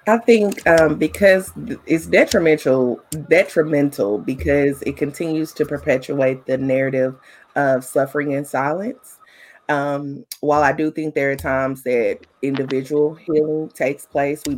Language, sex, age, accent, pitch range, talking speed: English, female, 30-49, American, 130-155 Hz, 130 wpm